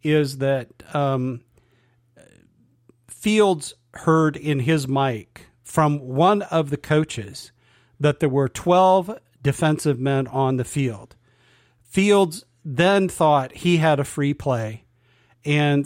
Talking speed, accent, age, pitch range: 115 wpm, American, 40-59, 135-190 Hz